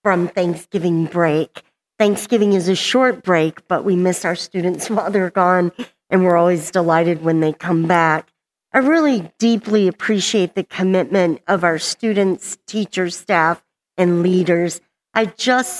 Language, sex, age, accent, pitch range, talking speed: English, female, 50-69, American, 170-205 Hz, 150 wpm